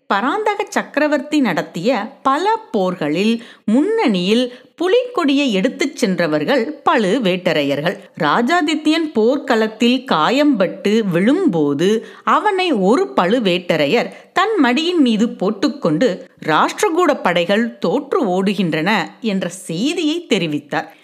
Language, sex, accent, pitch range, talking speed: Tamil, female, native, 185-295 Hz, 85 wpm